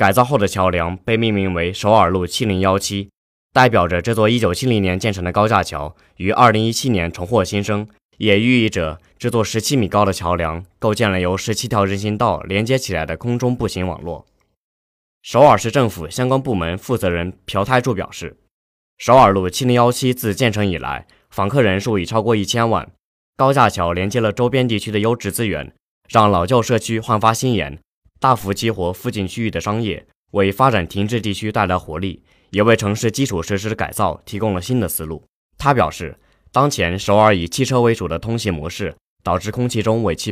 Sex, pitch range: male, 90-115 Hz